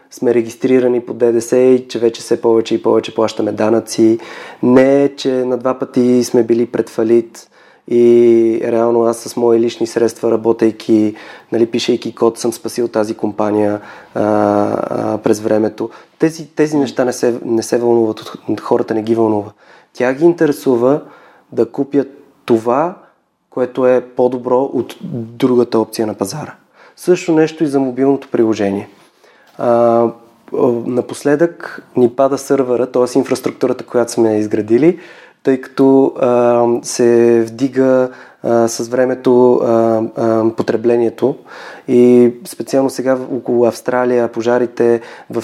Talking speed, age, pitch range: 130 wpm, 20-39, 115-130 Hz